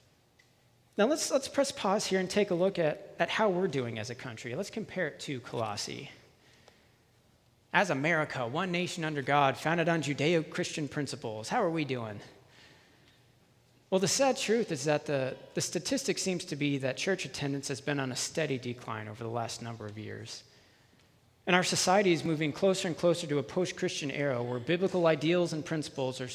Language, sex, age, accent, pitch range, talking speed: English, male, 40-59, American, 125-175 Hz, 185 wpm